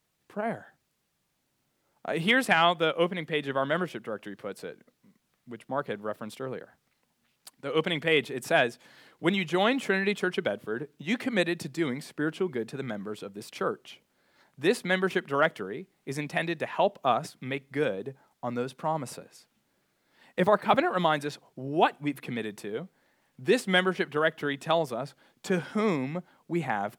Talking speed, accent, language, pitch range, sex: 160 wpm, American, English, 135-180 Hz, male